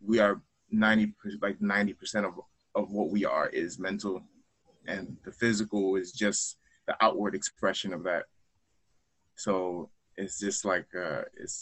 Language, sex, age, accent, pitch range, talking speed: English, male, 20-39, American, 95-110 Hz, 145 wpm